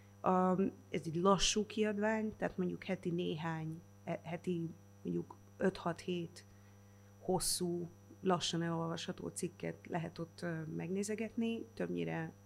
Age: 30-49